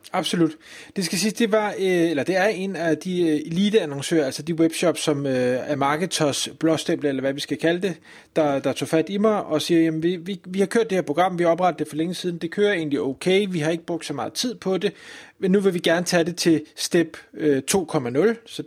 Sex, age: male, 30-49